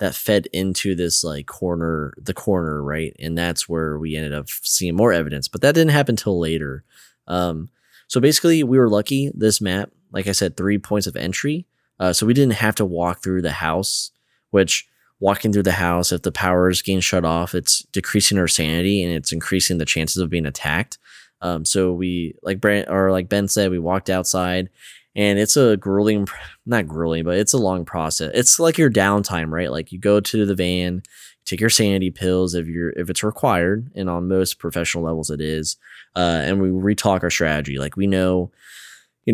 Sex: male